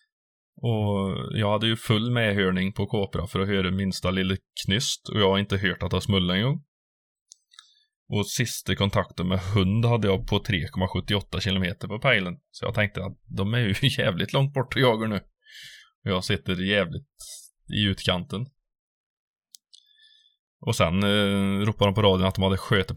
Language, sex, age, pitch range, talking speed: Swedish, male, 20-39, 95-130 Hz, 170 wpm